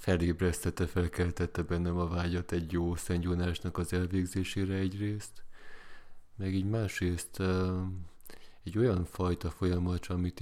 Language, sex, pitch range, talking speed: Hungarian, male, 90-95 Hz, 110 wpm